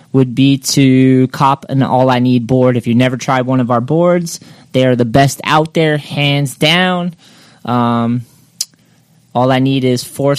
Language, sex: English, male